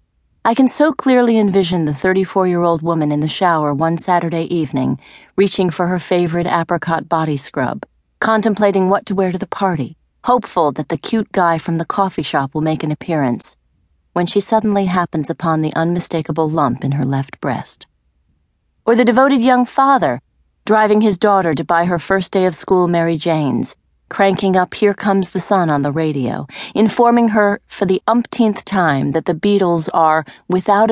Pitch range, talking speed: 160-205 Hz, 175 wpm